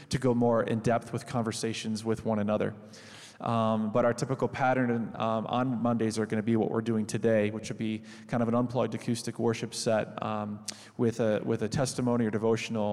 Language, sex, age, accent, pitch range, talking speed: English, male, 20-39, American, 110-130 Hz, 205 wpm